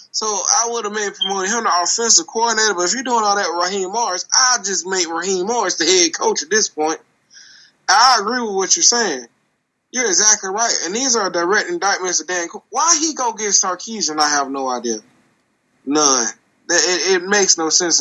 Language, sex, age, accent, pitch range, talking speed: English, male, 20-39, American, 155-240 Hz, 210 wpm